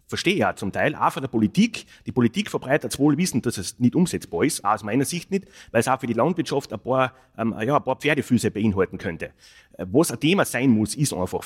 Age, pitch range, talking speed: 30-49, 120-180 Hz, 235 wpm